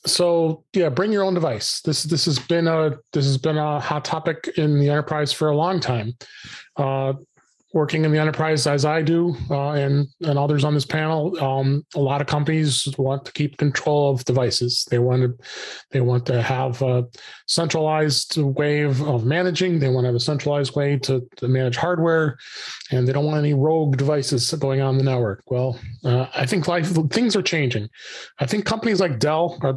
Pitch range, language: 135-155 Hz, English